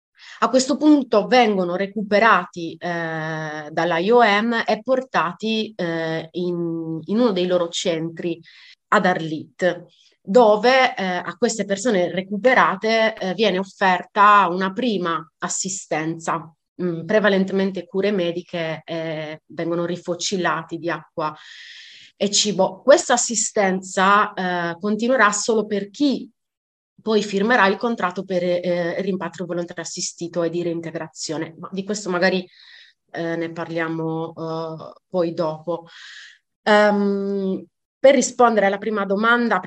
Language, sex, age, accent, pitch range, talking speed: Italian, female, 30-49, native, 170-210 Hz, 120 wpm